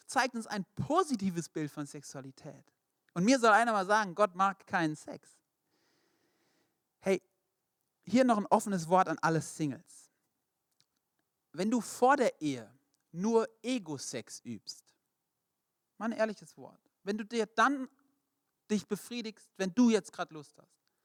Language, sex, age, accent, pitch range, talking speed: German, male, 40-59, German, 145-220 Hz, 140 wpm